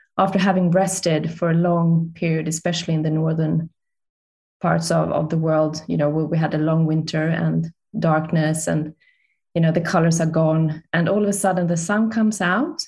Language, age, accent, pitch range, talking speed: English, 20-39, Swedish, 170-210 Hz, 195 wpm